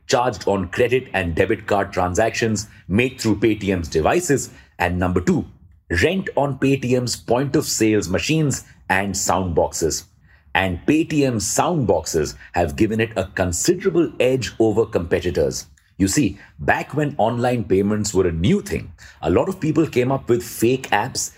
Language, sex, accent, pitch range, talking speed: English, male, Indian, 95-130 Hz, 155 wpm